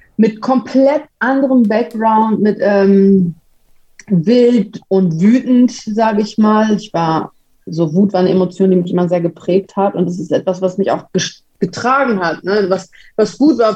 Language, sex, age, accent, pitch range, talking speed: German, female, 30-49, German, 185-225 Hz, 165 wpm